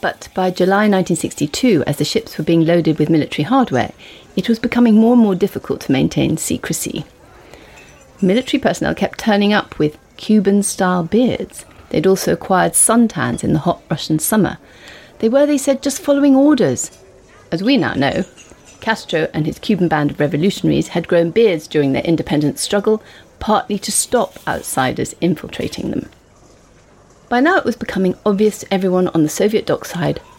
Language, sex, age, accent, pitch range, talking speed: English, female, 40-59, British, 170-230 Hz, 165 wpm